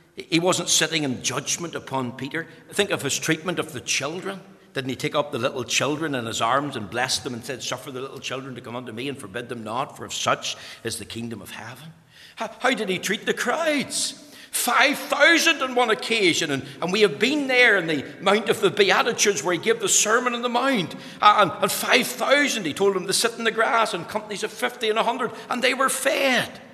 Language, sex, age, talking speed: English, male, 60-79, 225 wpm